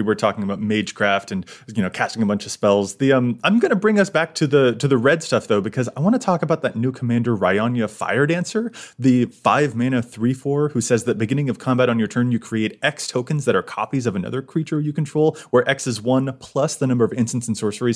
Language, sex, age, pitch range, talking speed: English, male, 30-49, 115-155 Hz, 250 wpm